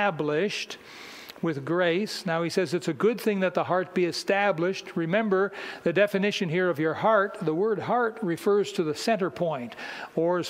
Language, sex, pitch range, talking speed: English, male, 170-200 Hz, 185 wpm